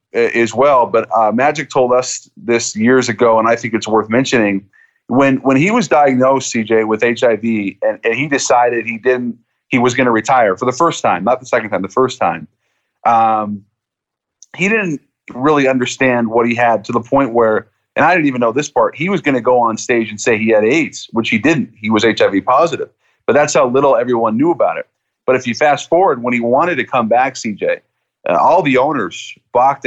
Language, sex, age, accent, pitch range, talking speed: English, male, 30-49, American, 115-140 Hz, 220 wpm